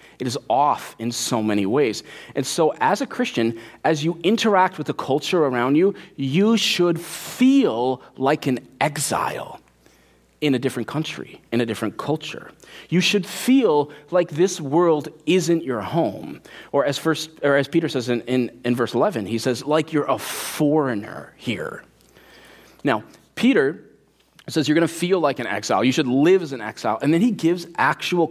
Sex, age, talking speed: male, 30-49, 180 wpm